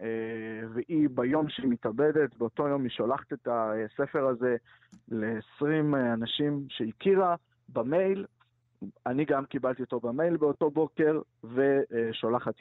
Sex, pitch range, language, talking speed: male, 120-170 Hz, Hebrew, 110 wpm